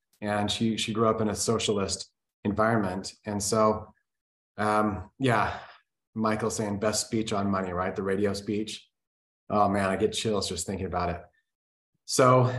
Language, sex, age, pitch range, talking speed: English, male, 30-49, 100-120 Hz, 155 wpm